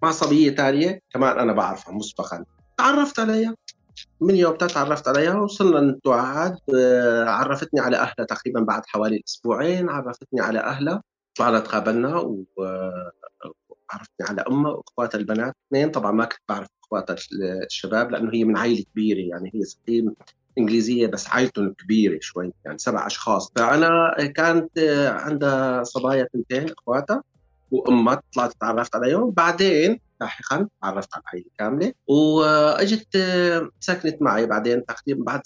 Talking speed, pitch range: 130 wpm, 115-160 Hz